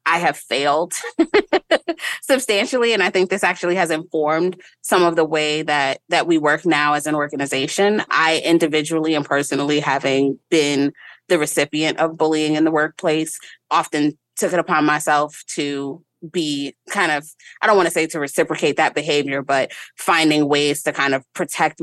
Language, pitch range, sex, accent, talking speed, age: English, 145-175 Hz, female, American, 170 wpm, 20-39